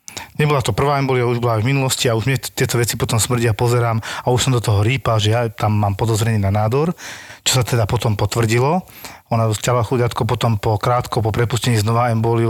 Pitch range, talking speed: 110-130 Hz, 215 wpm